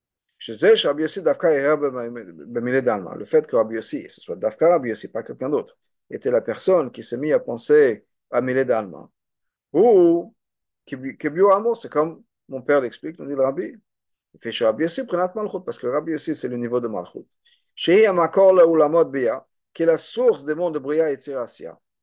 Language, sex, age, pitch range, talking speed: French, male, 50-69, 140-195 Hz, 205 wpm